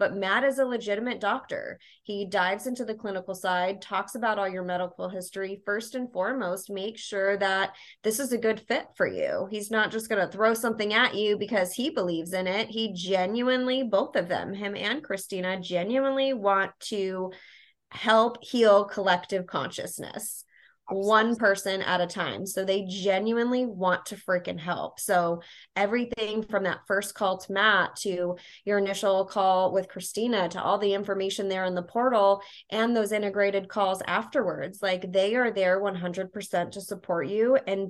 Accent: American